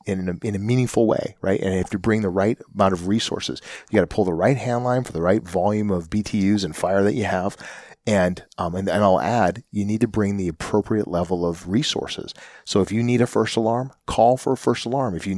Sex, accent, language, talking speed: male, American, English, 250 wpm